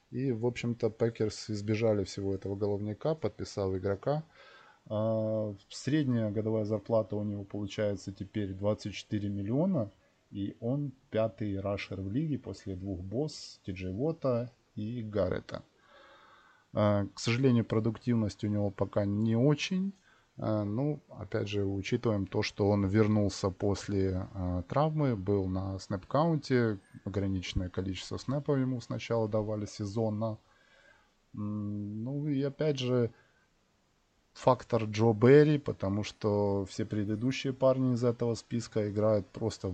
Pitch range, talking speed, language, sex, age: 100-120 Hz, 115 wpm, Russian, male, 20-39